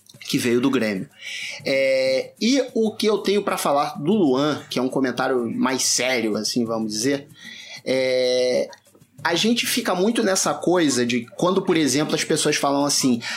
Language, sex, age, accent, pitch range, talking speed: Portuguese, male, 30-49, Brazilian, 135-185 Hz, 170 wpm